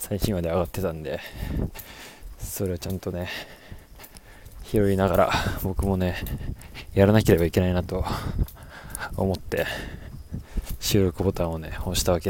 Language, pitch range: Japanese, 85-100 Hz